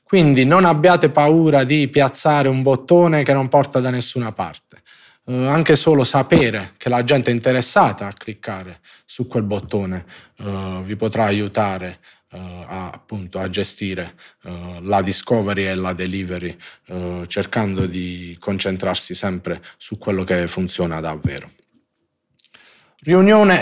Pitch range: 95-130 Hz